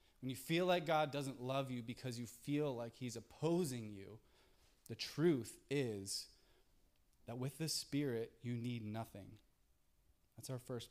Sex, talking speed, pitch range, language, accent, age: male, 155 wpm, 105-140 Hz, English, American, 20-39